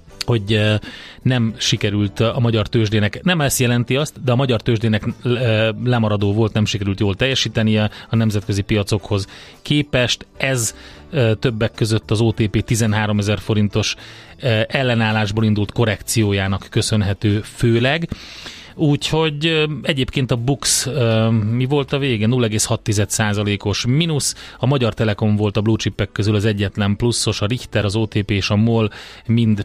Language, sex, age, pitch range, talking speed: Hungarian, male, 30-49, 105-125 Hz, 135 wpm